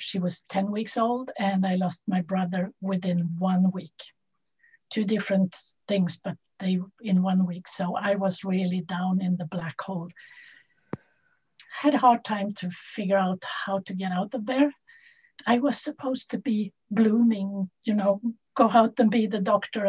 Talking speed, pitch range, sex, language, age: 175 wpm, 185-230 Hz, female, English, 60-79